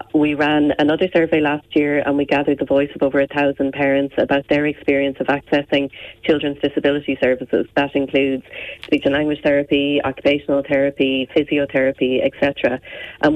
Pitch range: 135-150 Hz